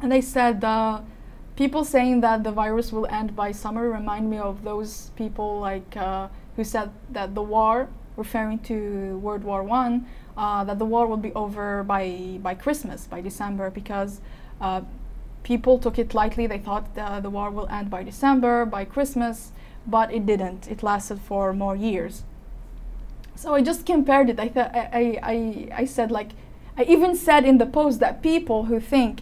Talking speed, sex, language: 185 wpm, female, English